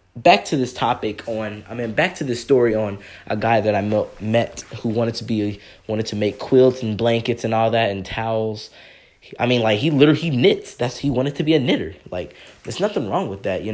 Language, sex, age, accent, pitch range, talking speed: English, male, 10-29, American, 100-125 Hz, 230 wpm